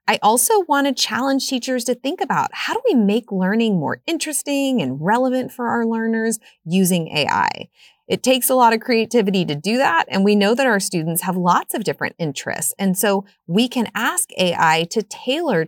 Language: English